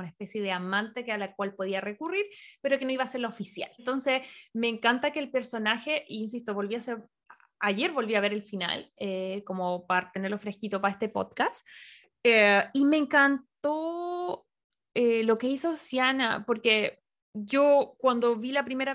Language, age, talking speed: Spanish, 20-39, 180 wpm